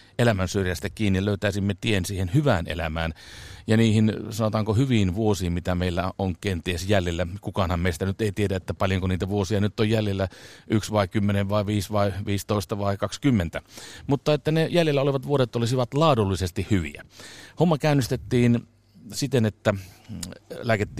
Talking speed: 155 wpm